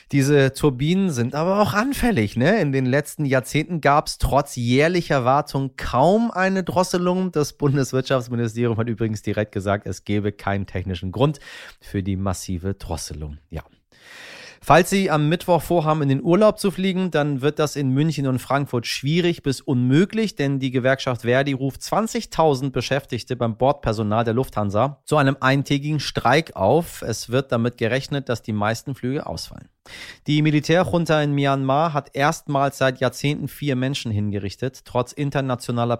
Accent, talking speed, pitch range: German, 150 wpm, 115-145 Hz